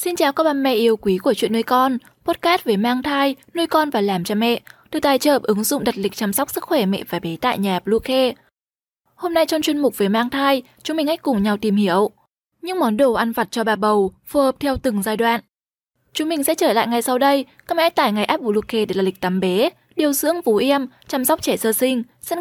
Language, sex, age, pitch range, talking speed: Vietnamese, female, 10-29, 210-290 Hz, 255 wpm